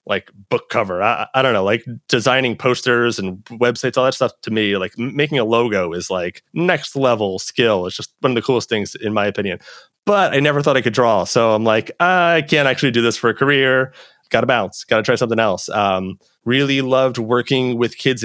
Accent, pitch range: American, 110-135 Hz